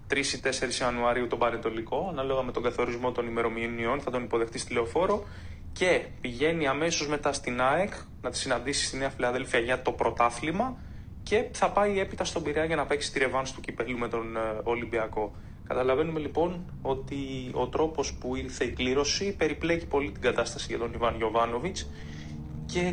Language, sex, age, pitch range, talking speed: Greek, male, 20-39, 115-155 Hz, 165 wpm